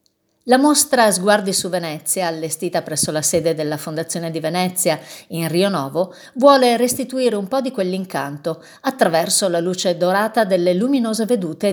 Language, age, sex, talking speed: Italian, 50-69, female, 150 wpm